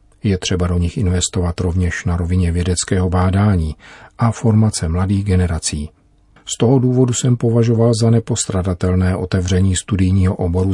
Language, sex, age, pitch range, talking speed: Czech, male, 40-59, 90-105 Hz, 135 wpm